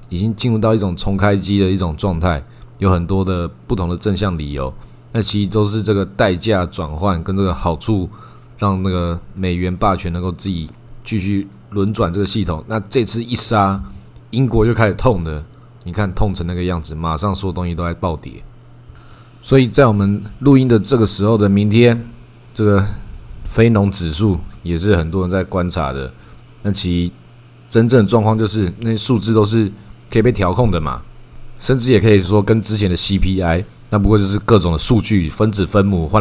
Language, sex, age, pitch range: Chinese, male, 20-39, 90-115 Hz